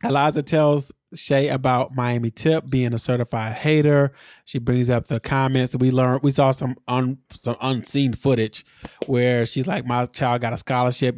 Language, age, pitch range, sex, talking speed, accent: English, 20-39, 125-155 Hz, male, 180 wpm, American